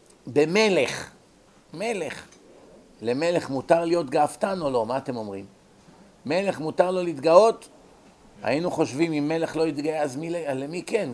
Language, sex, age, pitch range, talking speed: Hebrew, male, 50-69, 130-175 Hz, 135 wpm